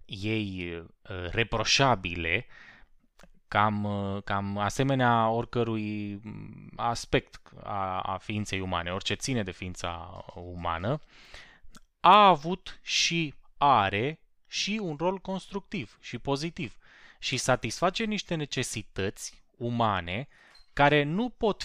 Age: 20-39